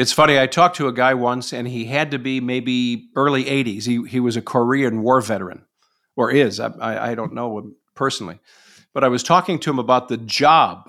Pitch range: 125-155 Hz